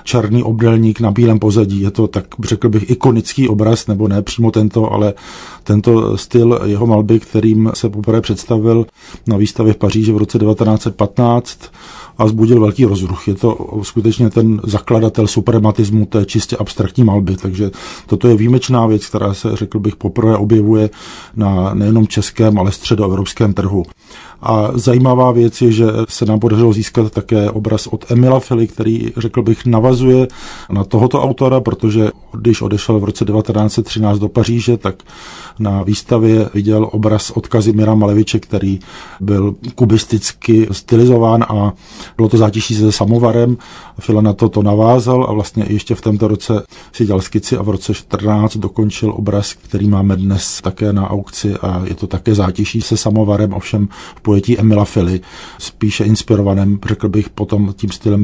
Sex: male